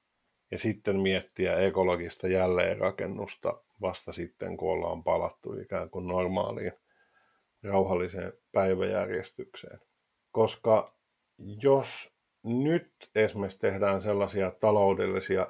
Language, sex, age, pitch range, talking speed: Finnish, male, 50-69, 95-105 Hz, 85 wpm